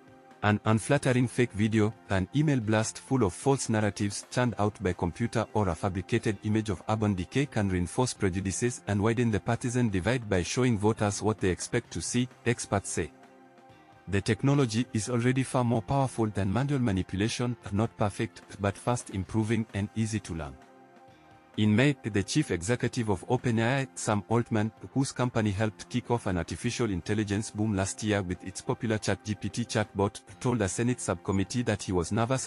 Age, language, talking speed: 50-69, English, 170 wpm